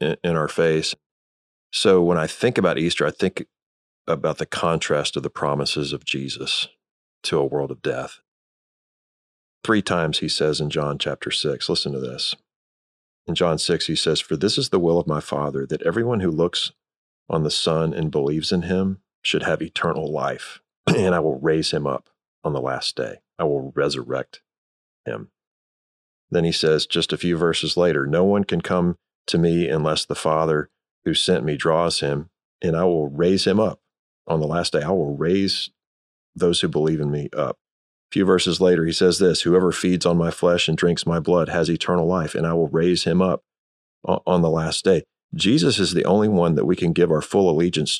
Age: 40-59